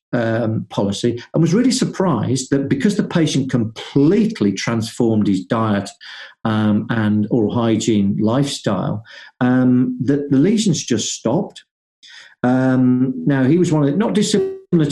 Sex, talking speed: male, 135 wpm